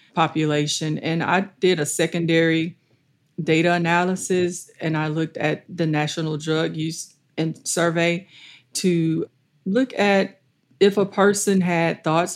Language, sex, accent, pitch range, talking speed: English, female, American, 150-170 Hz, 125 wpm